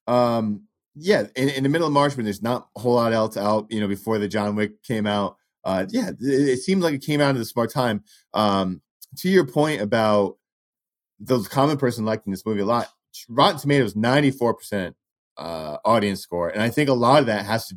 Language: English